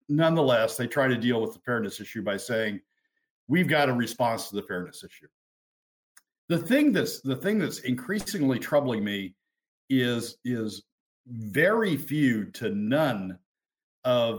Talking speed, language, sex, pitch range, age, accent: 140 wpm, English, male, 110-140 Hz, 50-69, American